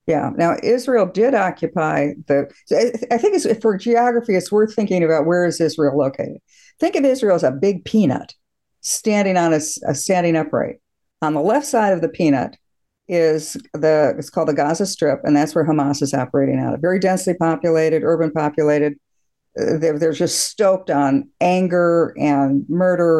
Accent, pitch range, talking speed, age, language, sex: American, 155-195 Hz, 170 wpm, 50-69, English, female